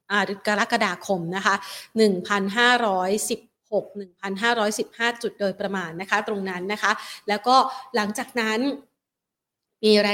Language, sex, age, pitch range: Thai, female, 30-49, 205-255 Hz